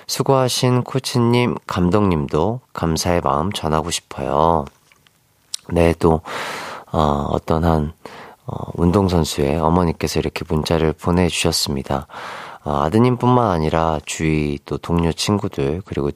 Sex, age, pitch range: male, 40-59, 80-110 Hz